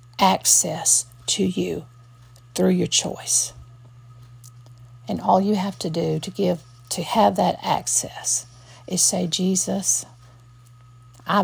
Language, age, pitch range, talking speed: English, 50-69, 120-190 Hz, 115 wpm